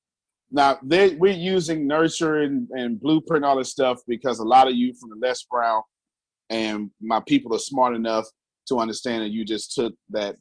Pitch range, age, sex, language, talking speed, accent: 115-160 Hz, 30-49, male, English, 185 wpm, American